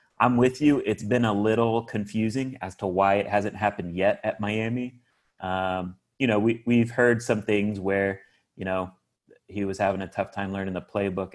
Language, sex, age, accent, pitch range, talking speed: English, male, 30-49, American, 95-120 Hz, 195 wpm